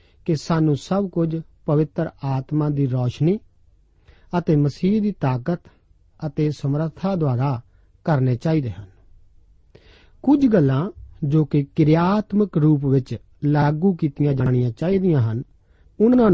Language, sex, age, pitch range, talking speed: Punjabi, male, 50-69, 110-175 Hz, 120 wpm